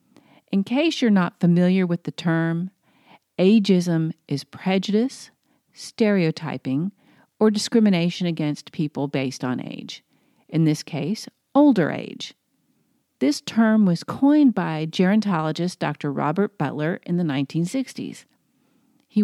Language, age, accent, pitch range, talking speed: English, 40-59, American, 150-195 Hz, 115 wpm